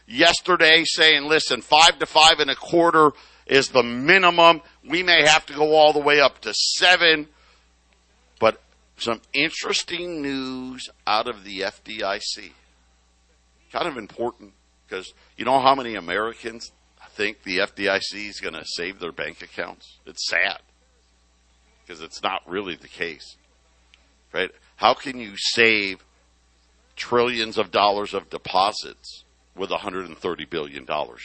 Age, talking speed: 50-69, 145 wpm